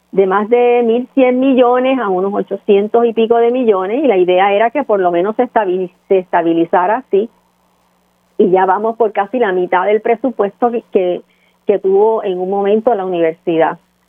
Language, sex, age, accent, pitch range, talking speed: Spanish, female, 40-59, American, 185-240 Hz, 185 wpm